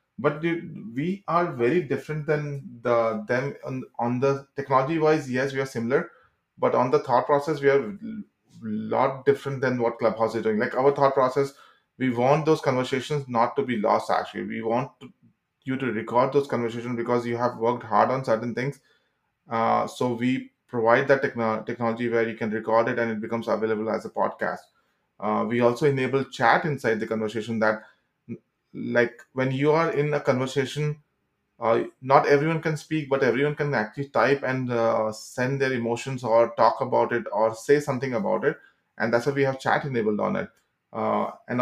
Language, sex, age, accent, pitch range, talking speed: English, male, 20-39, Indian, 115-145 Hz, 185 wpm